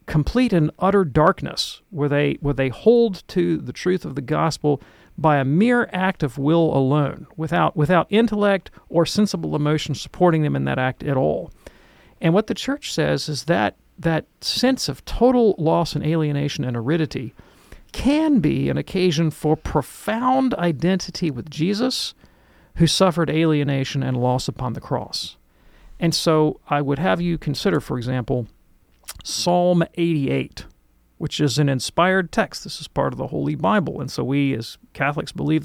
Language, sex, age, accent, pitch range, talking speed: English, male, 40-59, American, 140-180 Hz, 165 wpm